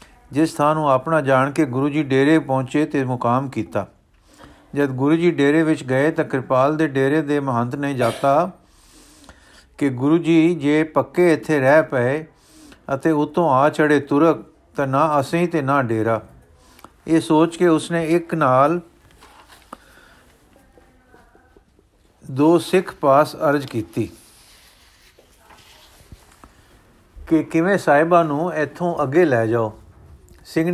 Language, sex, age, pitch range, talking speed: Punjabi, male, 50-69, 135-170 Hz, 130 wpm